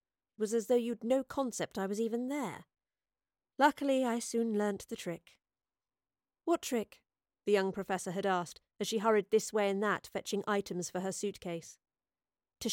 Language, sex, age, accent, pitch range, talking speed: English, female, 40-59, British, 195-245 Hz, 170 wpm